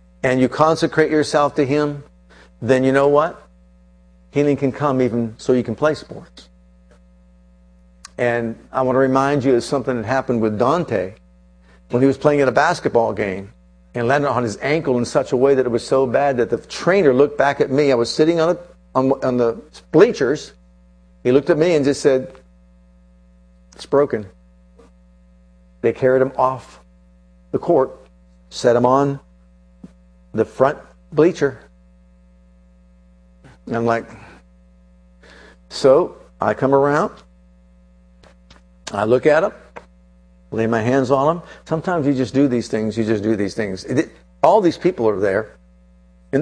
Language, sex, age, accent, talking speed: English, male, 50-69, American, 155 wpm